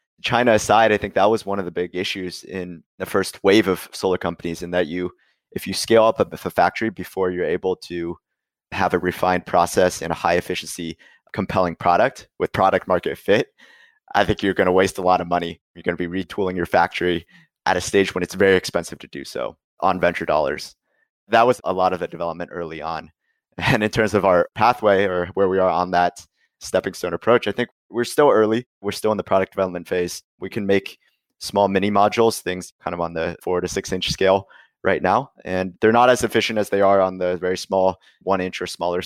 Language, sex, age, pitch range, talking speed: English, male, 20-39, 90-100 Hz, 220 wpm